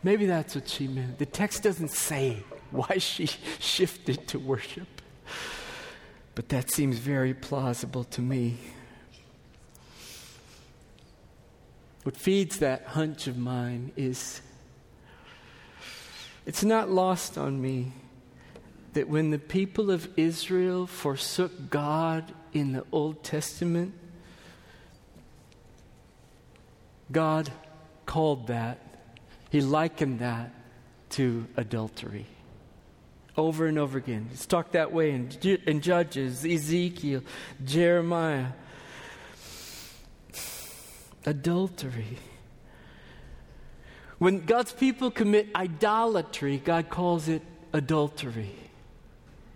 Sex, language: male, English